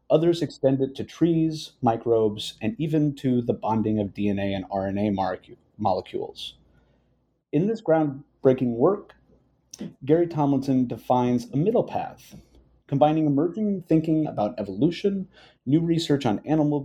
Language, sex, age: English, male, 30-49